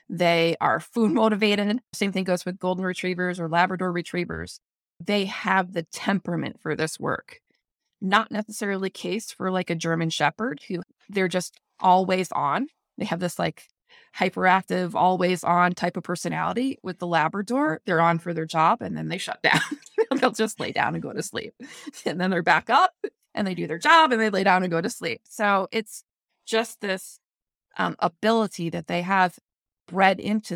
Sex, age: female, 20-39